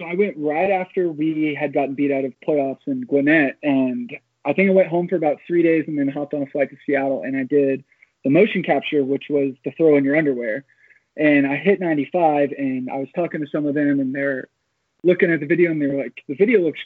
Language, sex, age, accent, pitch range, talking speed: English, male, 20-39, American, 140-160 Hz, 245 wpm